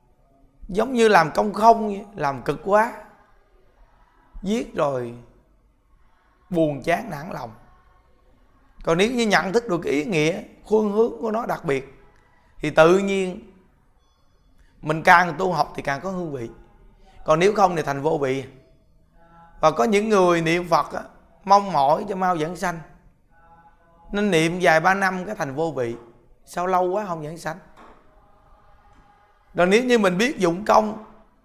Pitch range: 145-195 Hz